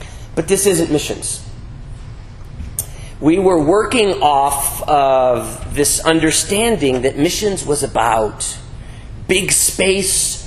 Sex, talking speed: male, 95 wpm